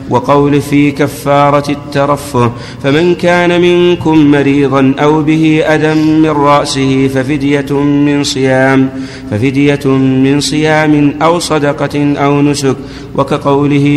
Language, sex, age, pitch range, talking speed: Arabic, male, 50-69, 135-145 Hz, 95 wpm